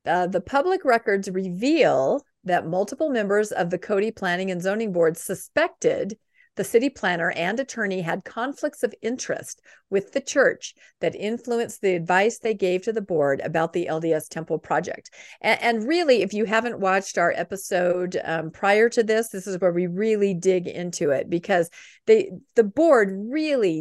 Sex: female